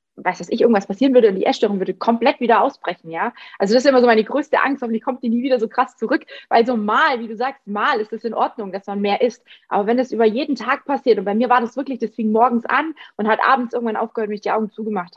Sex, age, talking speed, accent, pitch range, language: female, 20-39, 290 wpm, German, 215-265 Hz, German